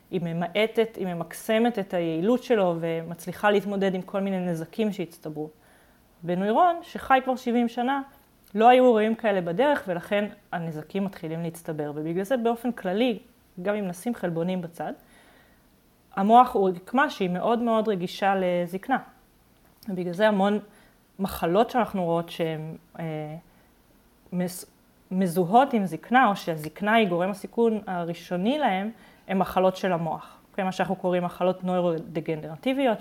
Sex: female